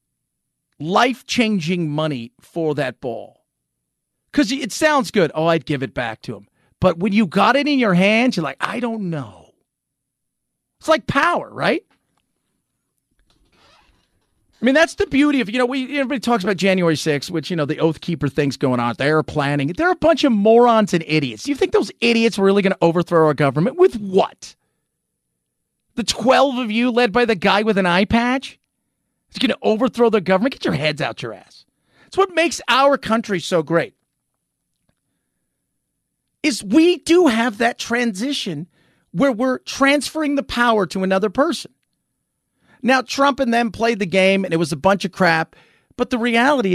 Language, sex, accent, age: English, male, American, 40-59